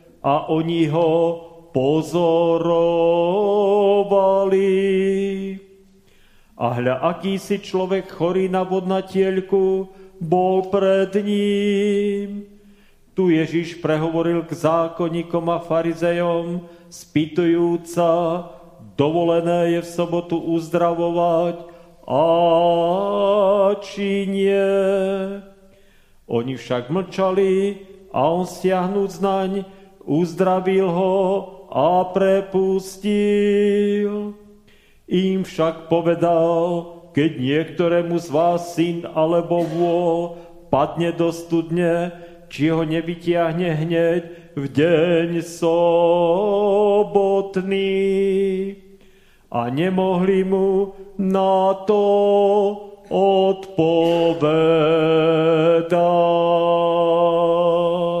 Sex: male